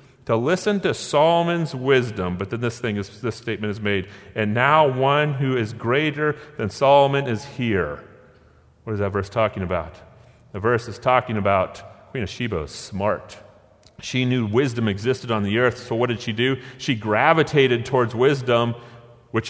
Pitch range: 100-130 Hz